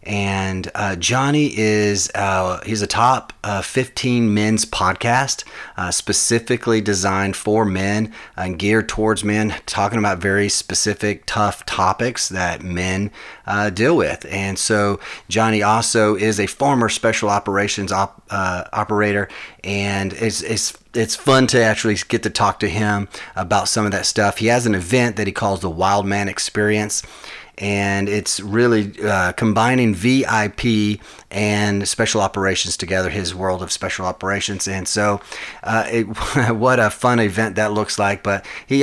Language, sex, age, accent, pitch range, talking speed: English, male, 30-49, American, 100-110 Hz, 155 wpm